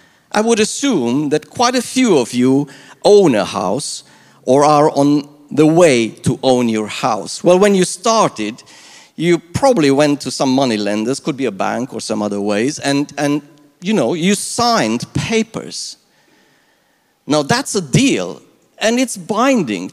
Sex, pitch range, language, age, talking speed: male, 145-225 Hz, English, 50-69, 165 wpm